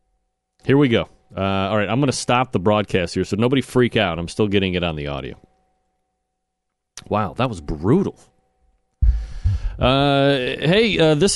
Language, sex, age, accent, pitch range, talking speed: English, male, 40-59, American, 100-140 Hz, 170 wpm